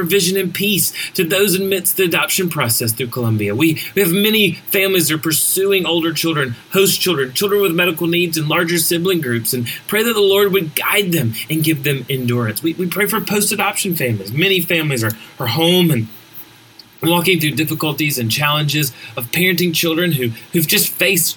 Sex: male